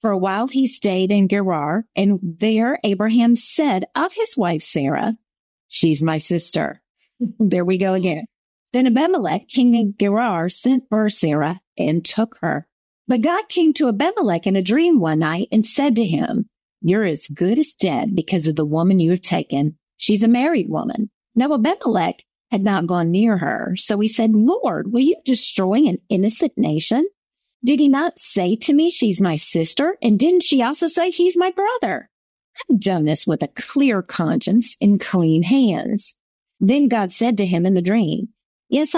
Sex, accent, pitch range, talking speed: female, American, 180-265 Hz, 180 wpm